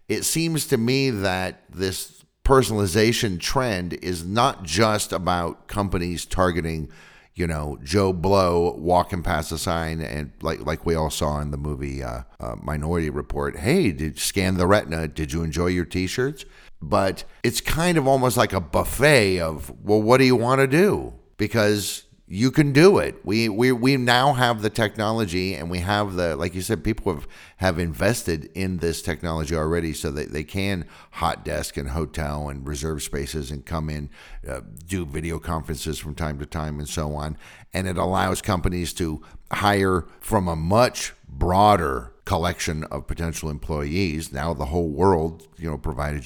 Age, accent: 50-69, American